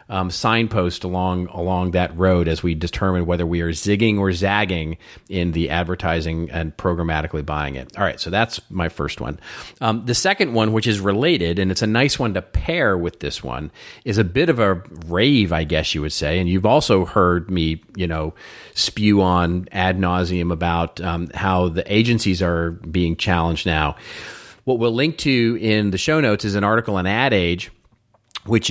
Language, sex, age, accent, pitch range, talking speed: English, male, 40-59, American, 90-105 Hz, 190 wpm